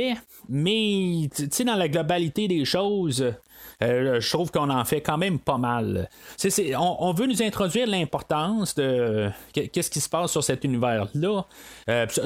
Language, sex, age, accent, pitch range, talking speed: French, male, 30-49, Canadian, 125-175 Hz, 160 wpm